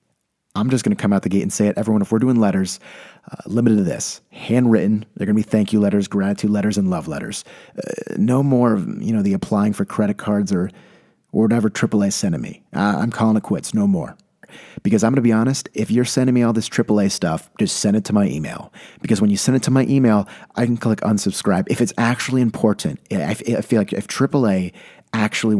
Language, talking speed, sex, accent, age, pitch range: English, 235 wpm, male, American, 30-49, 105-130 Hz